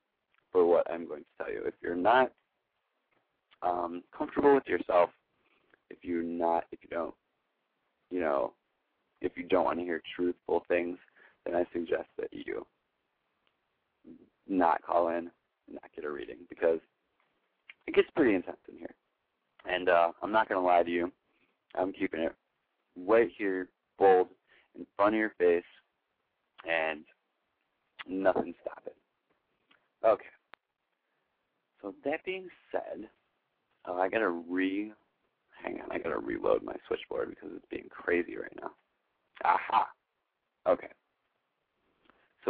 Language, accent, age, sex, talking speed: English, American, 30-49, male, 140 wpm